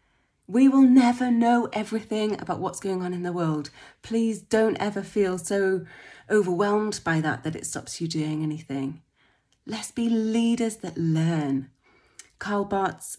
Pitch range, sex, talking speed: 155-200 Hz, female, 150 wpm